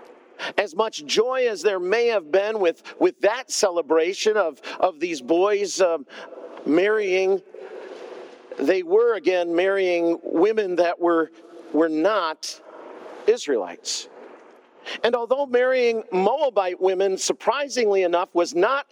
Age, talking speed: 50-69, 115 wpm